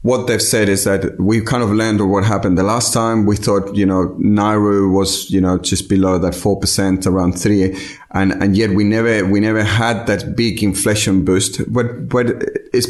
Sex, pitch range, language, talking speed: male, 95-110 Hz, English, 200 wpm